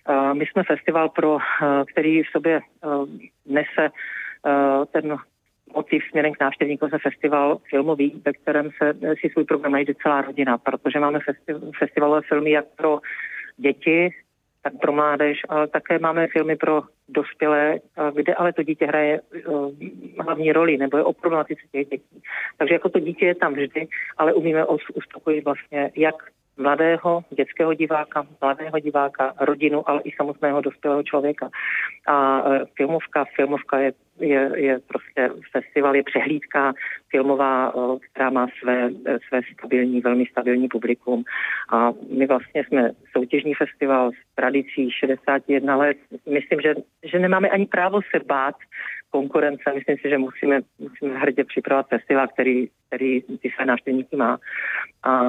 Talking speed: 140 wpm